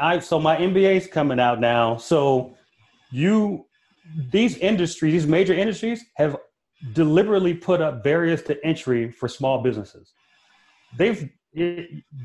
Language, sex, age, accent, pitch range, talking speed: English, male, 30-49, American, 130-170 Hz, 120 wpm